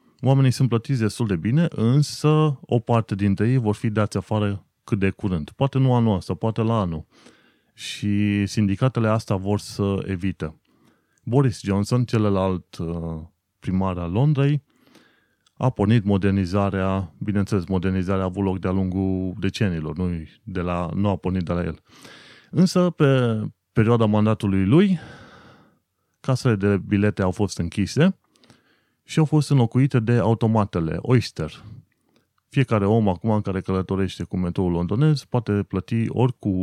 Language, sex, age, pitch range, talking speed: Romanian, male, 30-49, 95-125 Hz, 145 wpm